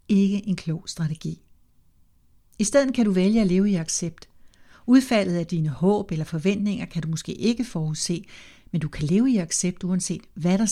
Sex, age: female, 60-79